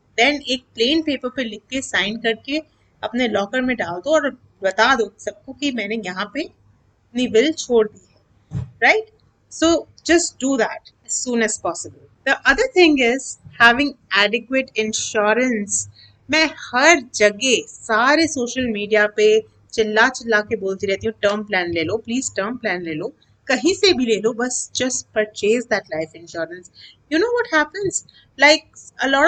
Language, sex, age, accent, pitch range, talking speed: Hindi, female, 30-49, native, 215-275 Hz, 150 wpm